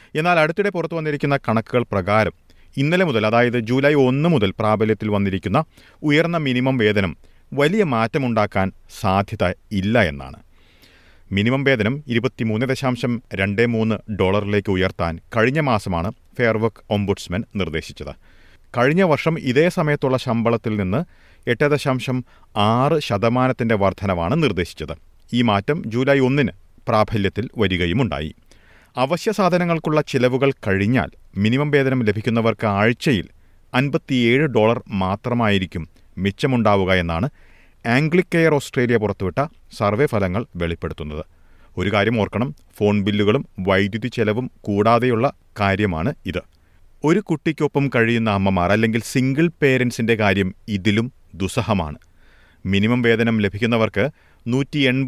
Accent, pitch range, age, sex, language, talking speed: native, 95-130 Hz, 40-59, male, Malayalam, 100 wpm